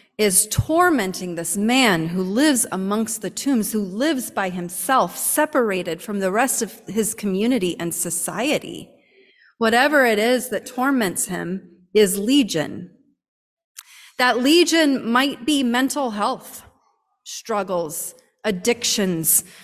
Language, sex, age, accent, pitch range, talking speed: English, female, 30-49, American, 195-250 Hz, 115 wpm